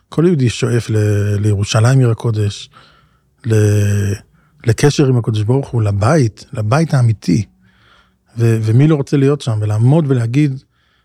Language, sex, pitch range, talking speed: Hebrew, male, 110-140 Hz, 130 wpm